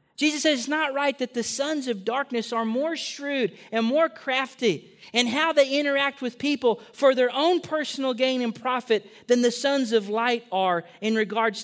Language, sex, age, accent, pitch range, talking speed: English, male, 40-59, American, 190-260 Hz, 190 wpm